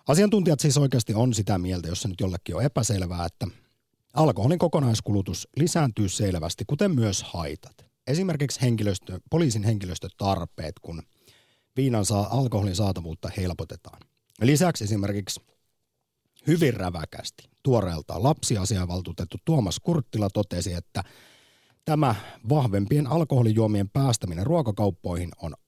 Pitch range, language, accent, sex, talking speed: 95-135 Hz, Finnish, native, male, 105 wpm